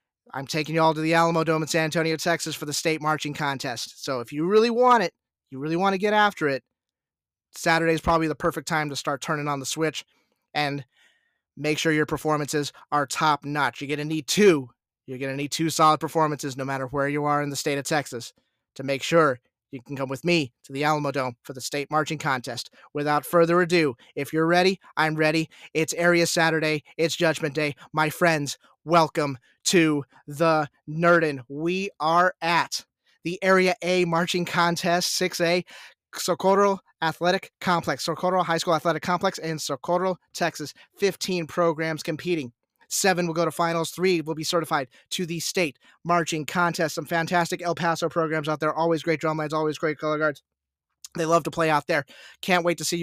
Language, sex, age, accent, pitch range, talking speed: English, male, 30-49, American, 150-170 Hz, 195 wpm